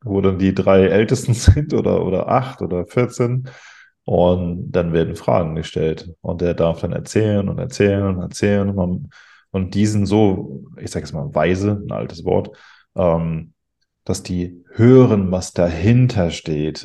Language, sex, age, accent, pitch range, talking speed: German, male, 20-39, German, 90-110 Hz, 155 wpm